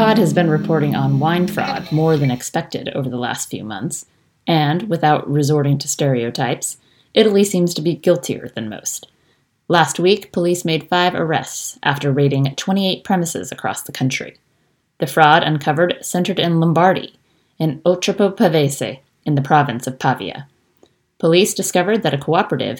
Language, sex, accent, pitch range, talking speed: English, female, American, 140-180 Hz, 155 wpm